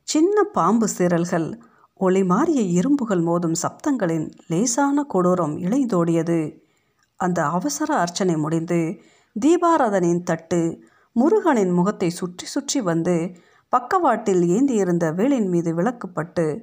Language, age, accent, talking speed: Tamil, 50-69, native, 100 wpm